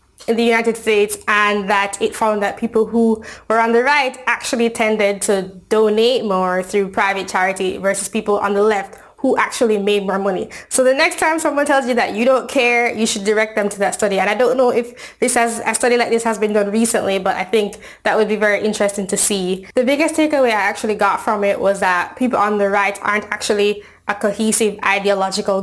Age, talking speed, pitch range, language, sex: 20-39, 220 wpm, 195-225 Hz, English, female